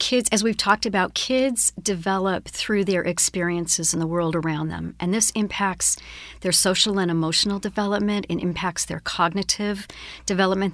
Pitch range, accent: 175-220 Hz, American